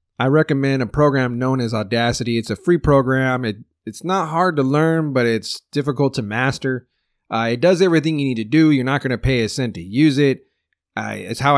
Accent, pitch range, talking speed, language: American, 115-140 Hz, 225 wpm, English